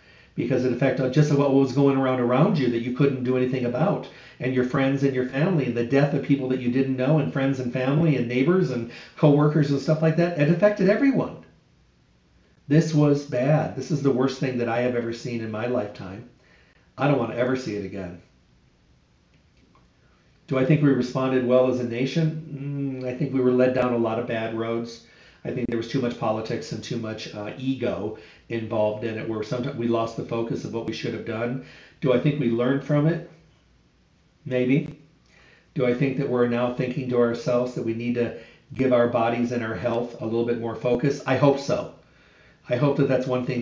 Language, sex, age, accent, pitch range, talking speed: English, male, 40-59, American, 120-145 Hz, 220 wpm